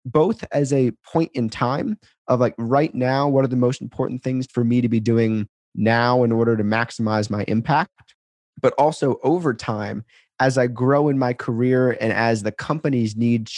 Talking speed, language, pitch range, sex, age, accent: 190 wpm, English, 115-135 Hz, male, 30-49, American